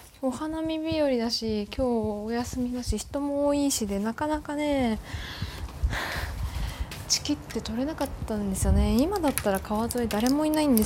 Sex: female